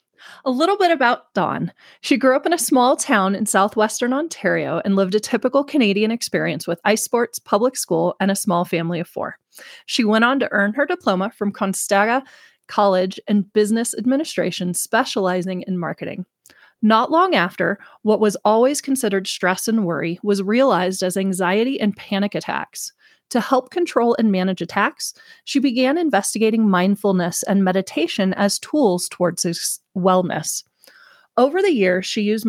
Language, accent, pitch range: English, American, 185-250 Hz